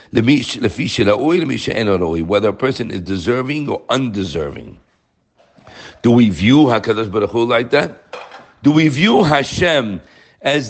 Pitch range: 100-140 Hz